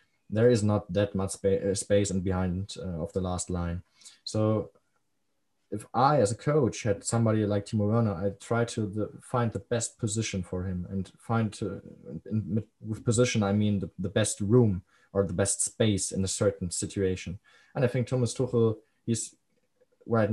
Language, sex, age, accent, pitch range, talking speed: English, male, 20-39, German, 95-110 Hz, 185 wpm